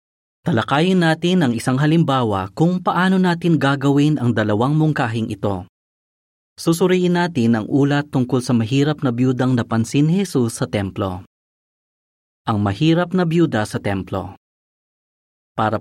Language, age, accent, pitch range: Filipino, 30-49, native, 105-150 Hz